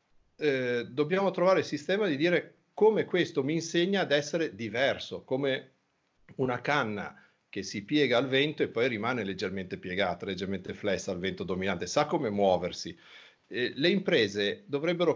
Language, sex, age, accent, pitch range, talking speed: Italian, male, 50-69, native, 120-185 Hz, 155 wpm